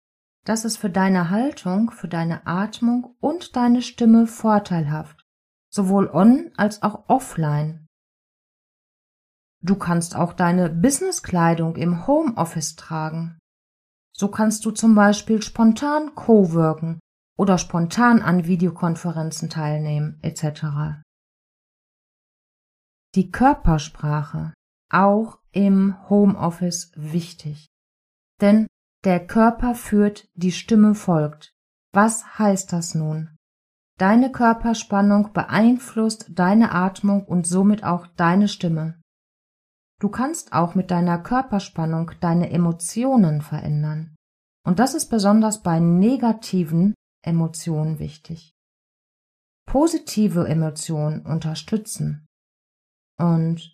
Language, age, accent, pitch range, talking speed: German, 30-49, German, 165-220 Hz, 95 wpm